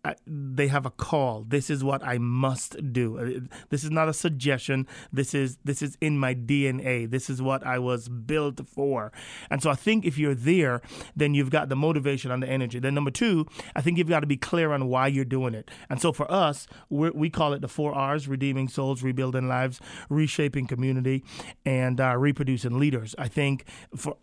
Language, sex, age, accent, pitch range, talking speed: English, male, 30-49, American, 130-145 Hz, 210 wpm